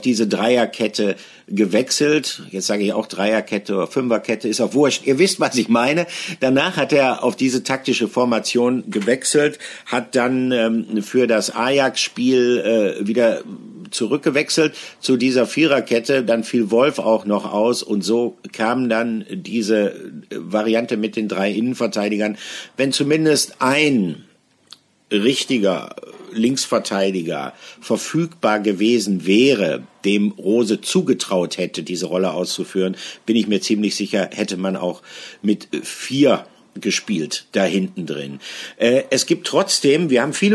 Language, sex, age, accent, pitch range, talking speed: German, male, 50-69, German, 105-130 Hz, 130 wpm